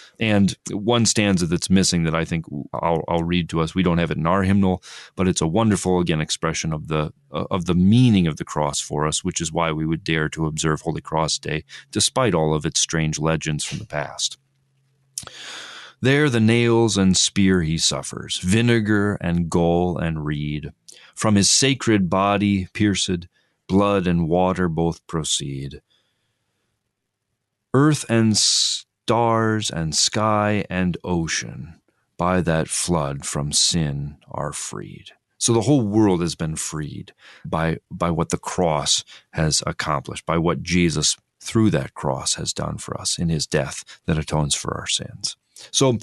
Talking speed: 165 wpm